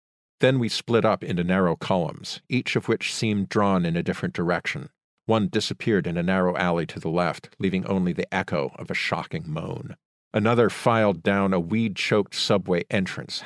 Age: 50-69